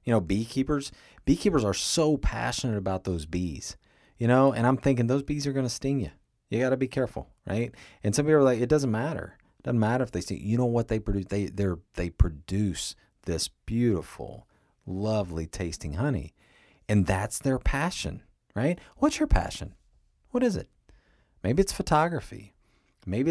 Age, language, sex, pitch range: 40-59, English, male, 95-130 Hz